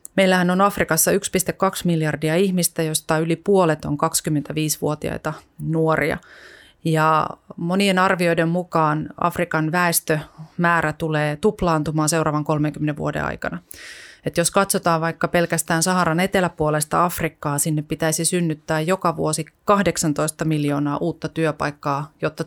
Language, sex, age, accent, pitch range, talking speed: Finnish, female, 30-49, native, 155-175 Hz, 110 wpm